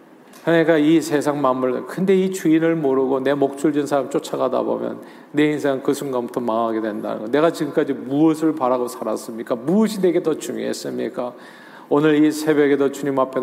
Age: 40-59